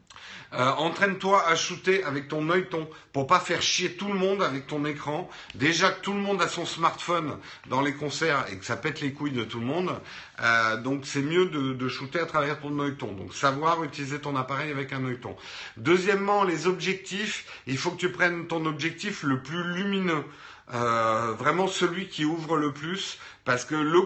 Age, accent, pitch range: 50-69, French, 135-180 Hz